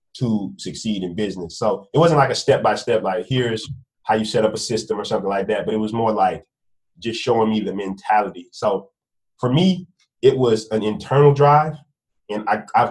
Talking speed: 205 wpm